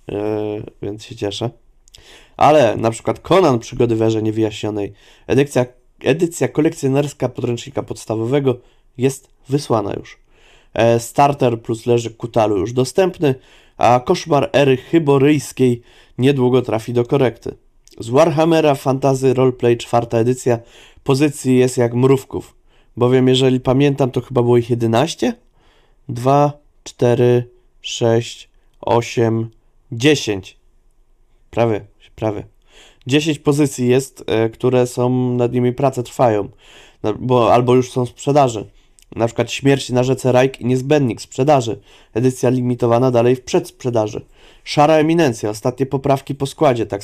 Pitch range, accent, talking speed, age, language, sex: 120-145 Hz, native, 120 wpm, 20-39, Polish, male